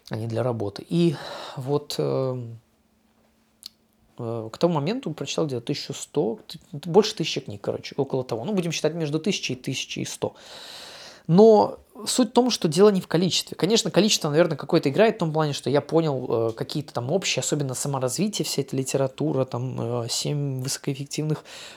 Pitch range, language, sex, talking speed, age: 130-165 Hz, Russian, male, 155 wpm, 20-39